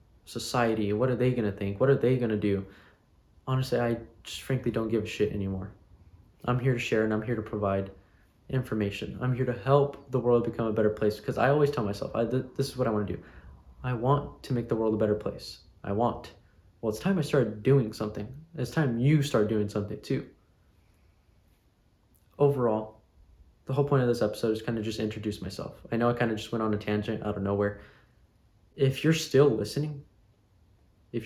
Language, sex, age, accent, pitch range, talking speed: English, male, 20-39, American, 105-120 Hz, 210 wpm